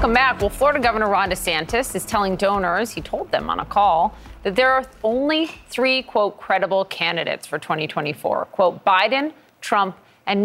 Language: English